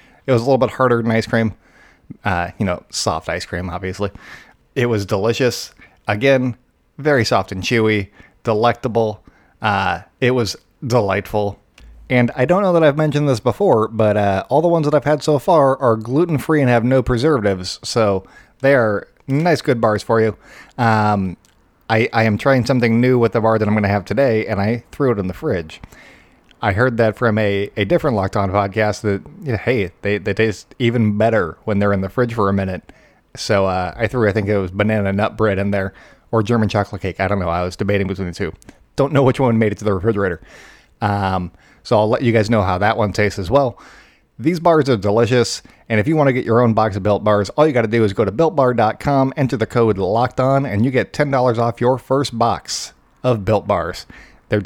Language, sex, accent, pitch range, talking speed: English, male, American, 100-130 Hz, 220 wpm